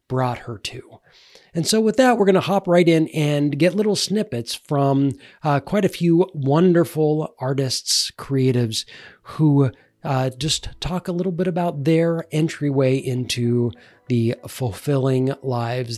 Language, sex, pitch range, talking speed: English, male, 115-155 Hz, 145 wpm